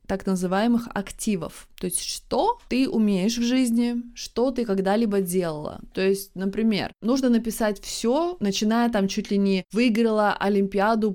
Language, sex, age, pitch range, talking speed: Russian, female, 20-39, 185-225 Hz, 145 wpm